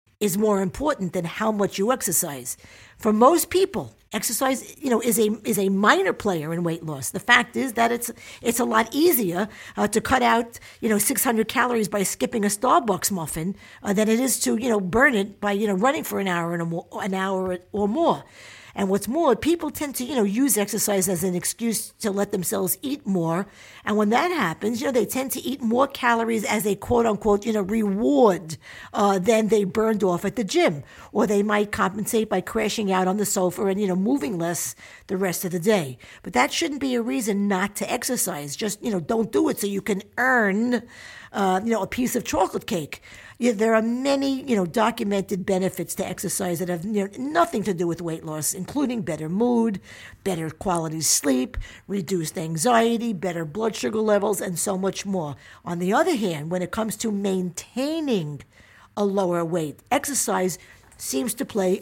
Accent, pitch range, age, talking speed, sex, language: American, 185-230 Hz, 50-69, 200 wpm, female, English